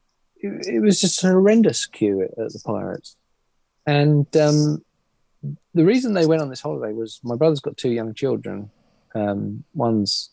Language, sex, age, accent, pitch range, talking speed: English, male, 30-49, British, 110-155 Hz, 155 wpm